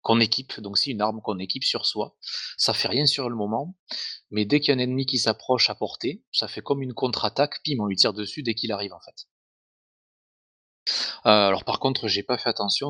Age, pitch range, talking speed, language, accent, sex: 20-39, 100-120 Hz, 235 wpm, French, French, male